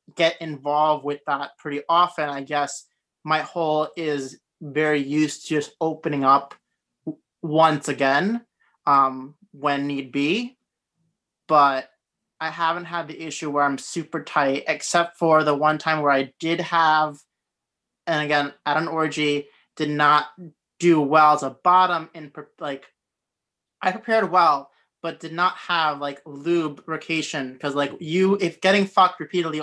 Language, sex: English, male